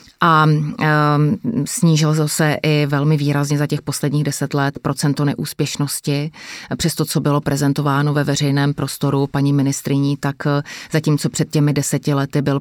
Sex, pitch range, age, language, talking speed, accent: female, 135-150 Hz, 30-49, Czech, 150 wpm, native